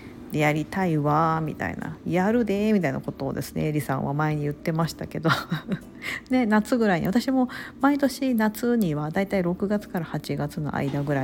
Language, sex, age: Japanese, female, 50-69